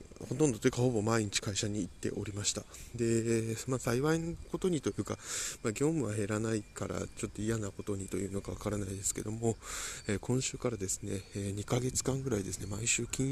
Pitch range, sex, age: 100-120 Hz, male, 20-39